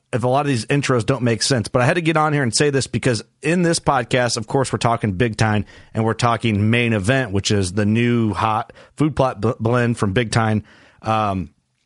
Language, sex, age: English, male, 30-49